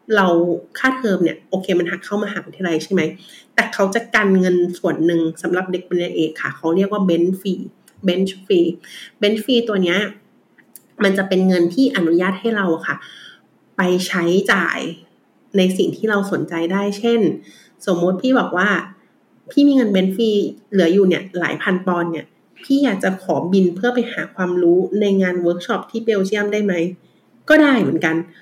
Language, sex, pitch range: English, female, 180-225 Hz